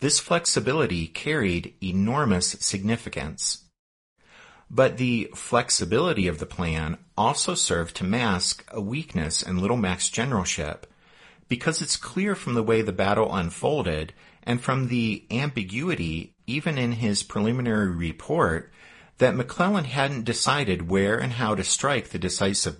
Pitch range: 90-130 Hz